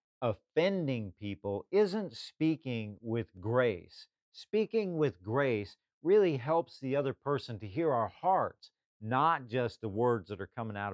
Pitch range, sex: 110-150 Hz, male